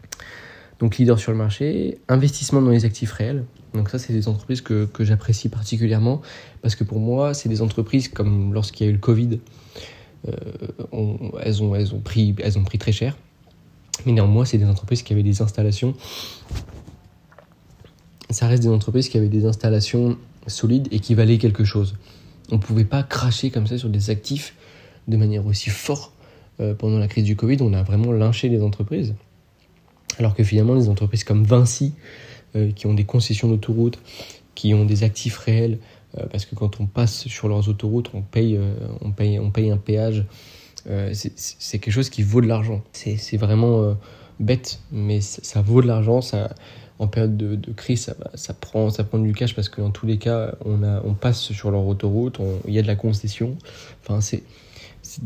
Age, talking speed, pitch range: 20-39, 200 wpm, 105-120 Hz